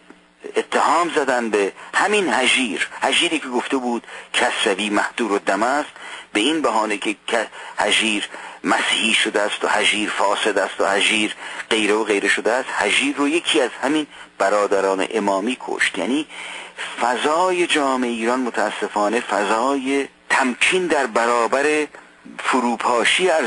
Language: Persian